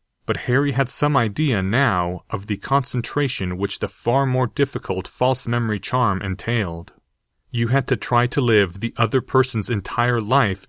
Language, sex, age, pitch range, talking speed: English, male, 30-49, 100-125 Hz, 165 wpm